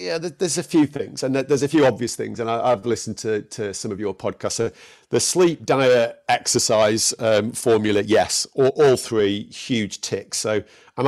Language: English